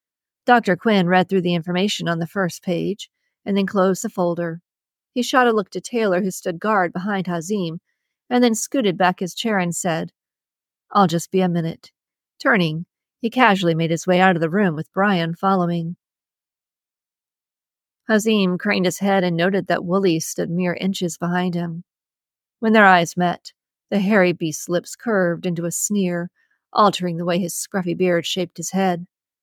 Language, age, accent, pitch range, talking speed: English, 40-59, American, 175-205 Hz, 175 wpm